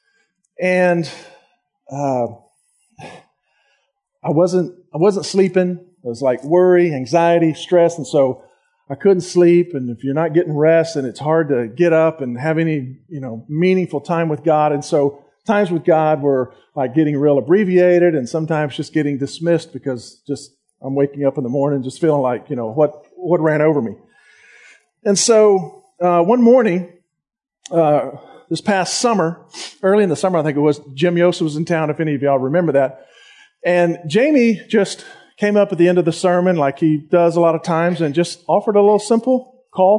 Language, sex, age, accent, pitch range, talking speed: English, male, 40-59, American, 145-190 Hz, 190 wpm